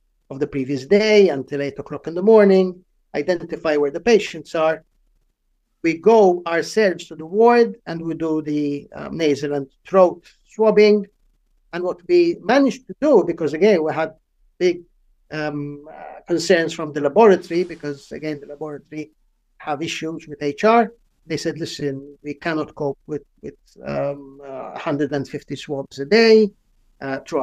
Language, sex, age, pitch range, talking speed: English, male, 50-69, 150-200 Hz, 155 wpm